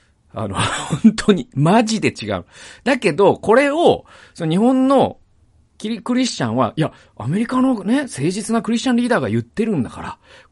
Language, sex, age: Japanese, male, 40-59